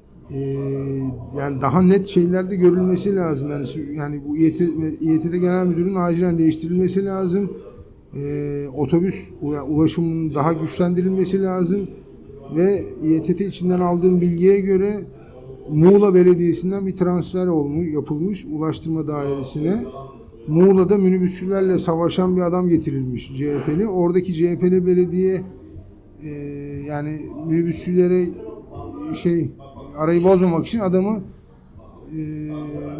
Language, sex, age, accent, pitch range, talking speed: Turkish, male, 50-69, native, 145-185 Hz, 100 wpm